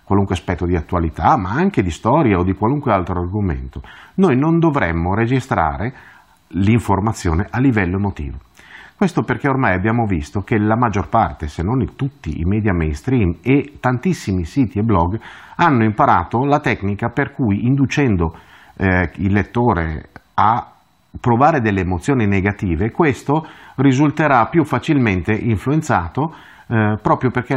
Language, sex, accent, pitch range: Italian, male, native, 95-130 Hz